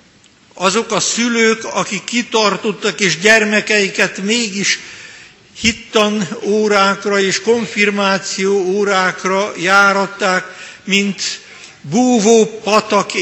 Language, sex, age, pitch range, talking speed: Hungarian, male, 60-79, 180-205 Hz, 75 wpm